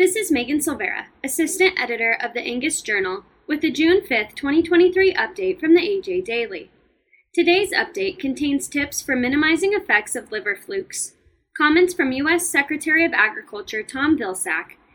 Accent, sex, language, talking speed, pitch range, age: American, female, English, 155 wpm, 260-370 Hz, 10-29